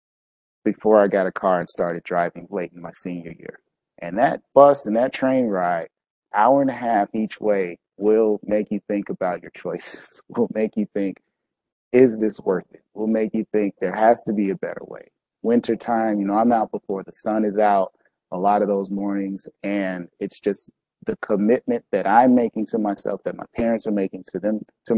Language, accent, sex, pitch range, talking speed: English, American, male, 100-115 Hz, 205 wpm